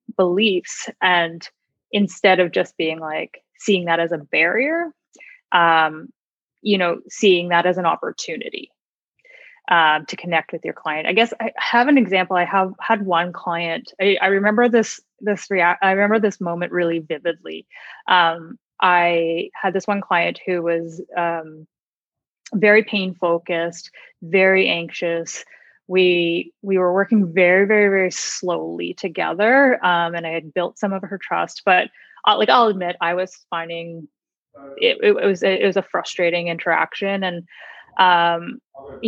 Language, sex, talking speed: English, female, 150 wpm